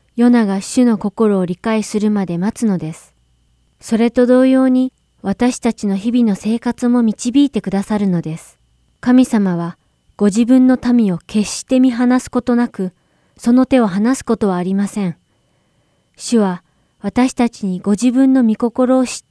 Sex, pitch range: female, 190-245 Hz